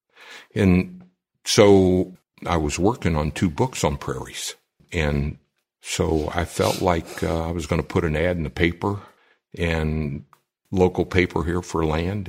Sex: male